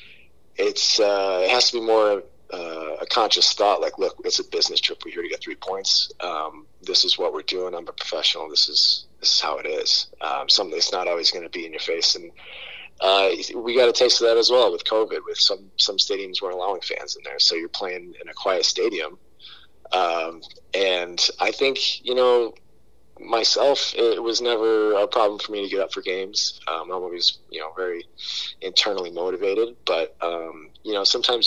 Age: 30-49